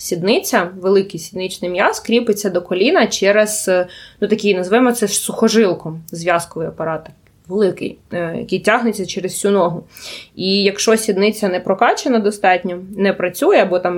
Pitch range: 180-220 Hz